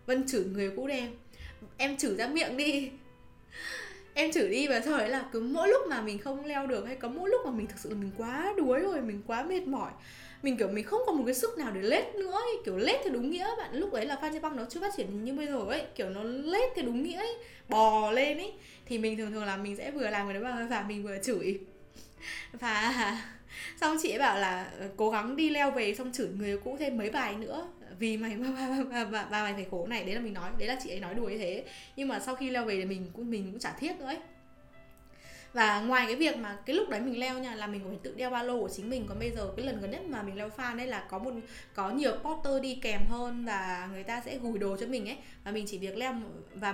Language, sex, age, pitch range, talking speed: Vietnamese, female, 10-29, 210-275 Hz, 270 wpm